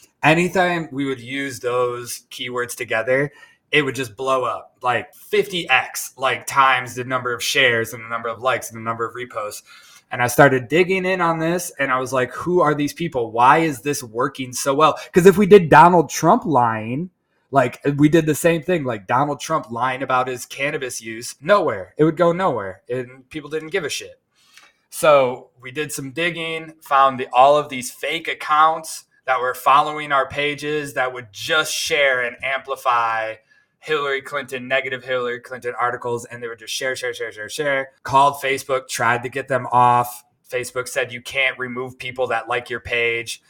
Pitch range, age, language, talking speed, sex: 125-150 Hz, 20-39, English, 190 wpm, male